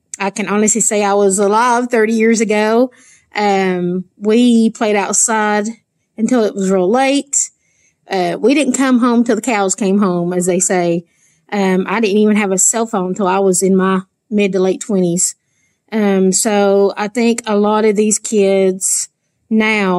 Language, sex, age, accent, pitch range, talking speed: English, female, 30-49, American, 190-225 Hz, 175 wpm